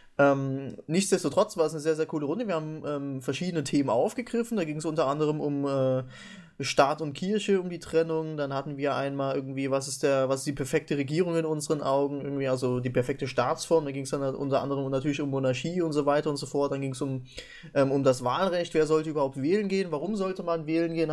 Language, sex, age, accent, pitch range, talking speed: English, male, 20-39, German, 135-165 Hz, 230 wpm